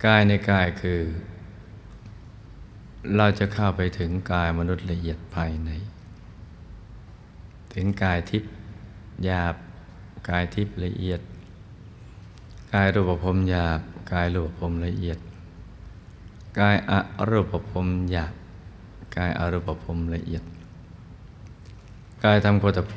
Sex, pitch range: male, 85-100 Hz